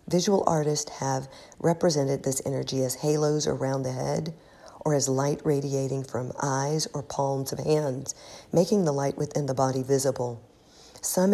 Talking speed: 155 wpm